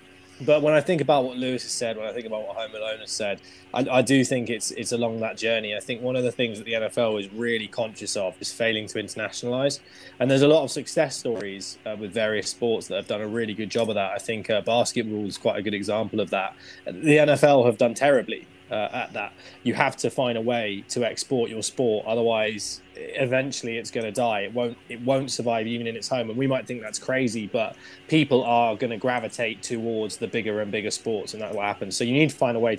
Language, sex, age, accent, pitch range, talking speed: English, male, 20-39, British, 105-125 Hz, 250 wpm